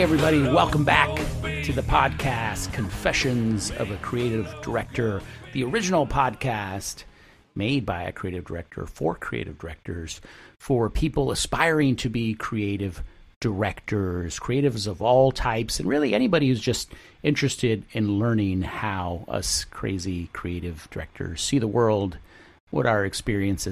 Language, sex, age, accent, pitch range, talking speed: English, male, 50-69, American, 100-140 Hz, 130 wpm